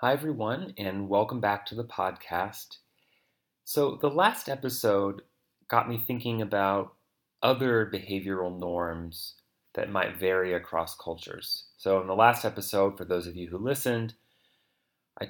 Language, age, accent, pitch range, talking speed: English, 30-49, American, 95-115 Hz, 140 wpm